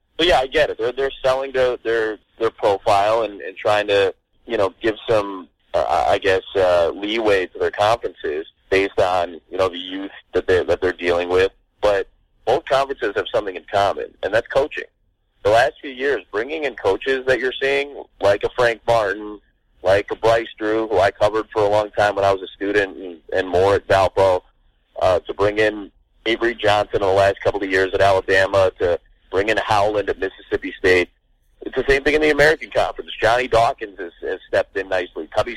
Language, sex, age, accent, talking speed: English, male, 30-49, American, 205 wpm